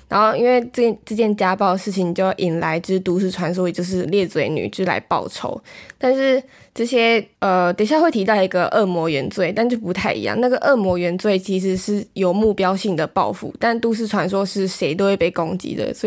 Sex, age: female, 10-29